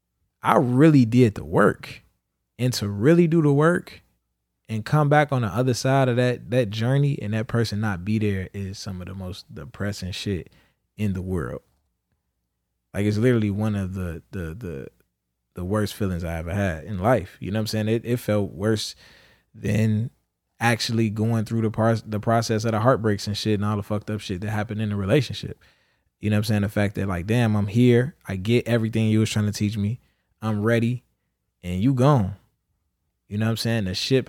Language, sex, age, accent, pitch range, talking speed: English, male, 20-39, American, 100-120 Hz, 210 wpm